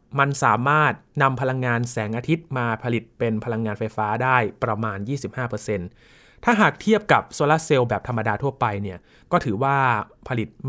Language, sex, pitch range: Thai, male, 115-150 Hz